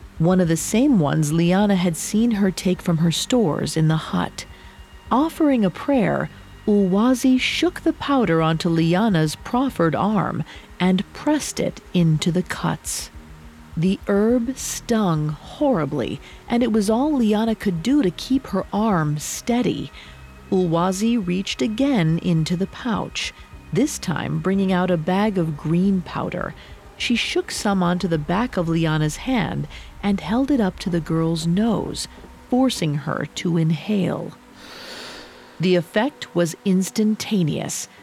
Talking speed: 140 wpm